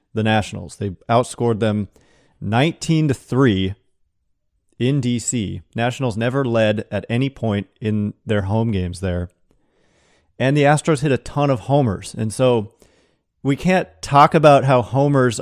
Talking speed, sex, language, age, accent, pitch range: 140 wpm, male, English, 30-49, American, 105-130 Hz